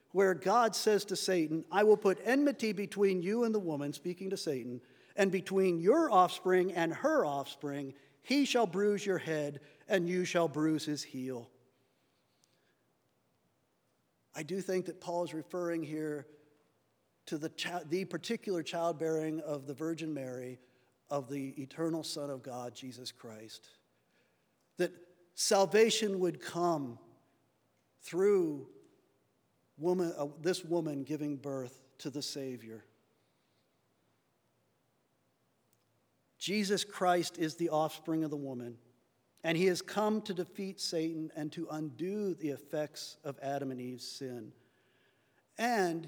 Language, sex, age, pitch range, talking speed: English, male, 50-69, 145-190 Hz, 130 wpm